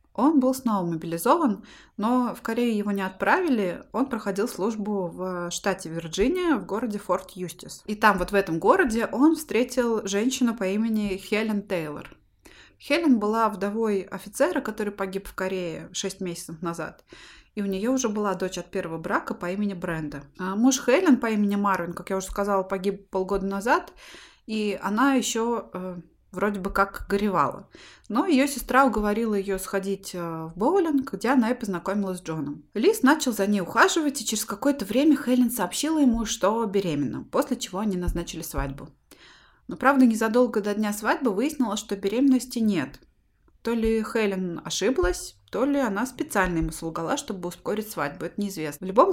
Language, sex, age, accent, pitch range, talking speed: Russian, female, 20-39, native, 190-245 Hz, 165 wpm